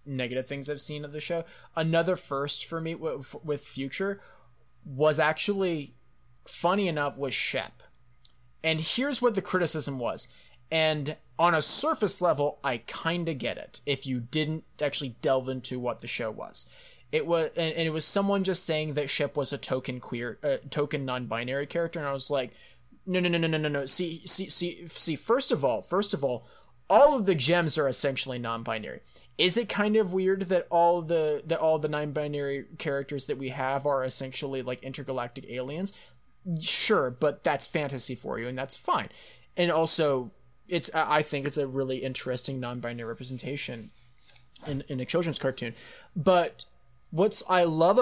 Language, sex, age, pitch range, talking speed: English, male, 20-39, 130-170 Hz, 180 wpm